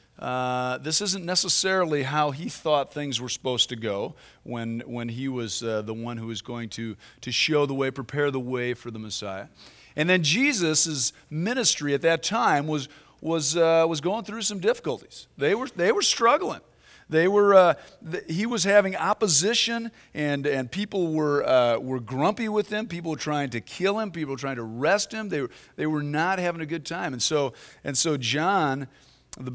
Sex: male